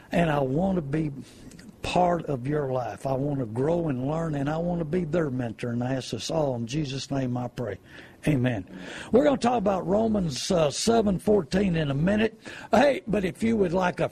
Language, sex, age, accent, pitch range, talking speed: English, male, 60-79, American, 155-205 Hz, 215 wpm